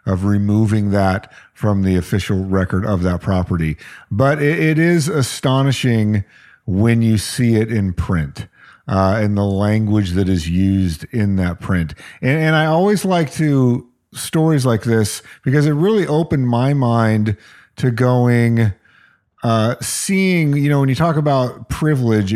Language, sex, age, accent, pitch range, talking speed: English, male, 50-69, American, 100-145 Hz, 155 wpm